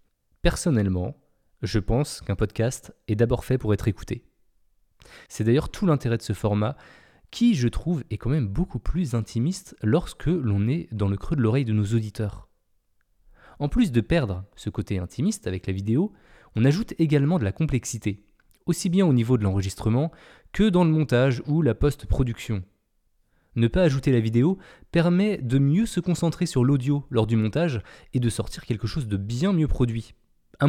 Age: 20-39